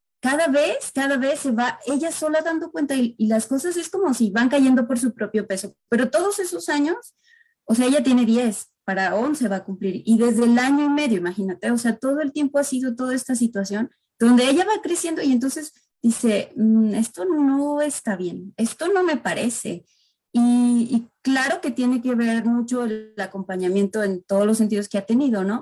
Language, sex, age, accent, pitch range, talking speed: Spanish, female, 30-49, Mexican, 215-280 Hz, 205 wpm